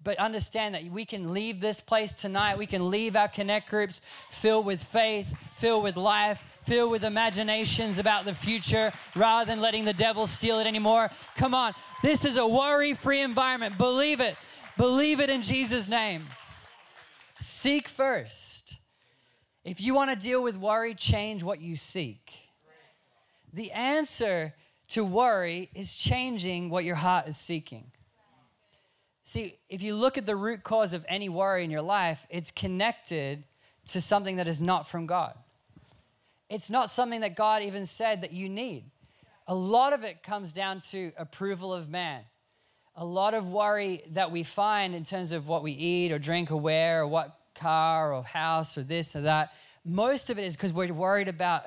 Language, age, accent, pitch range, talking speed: English, 20-39, American, 170-220 Hz, 175 wpm